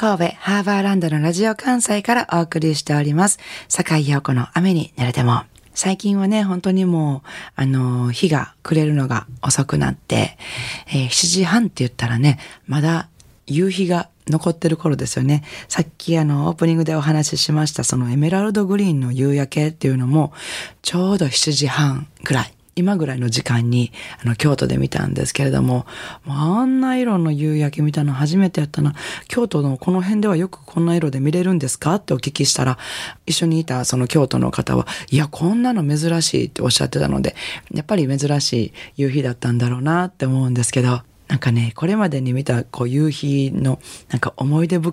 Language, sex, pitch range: Japanese, female, 125-170 Hz